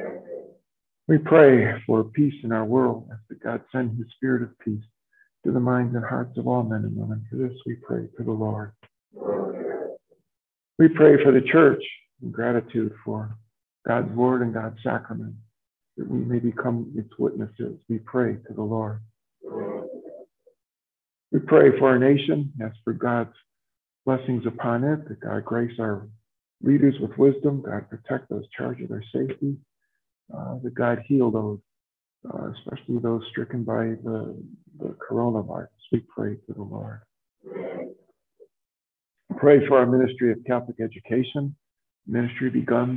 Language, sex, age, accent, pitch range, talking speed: English, male, 50-69, American, 110-130 Hz, 155 wpm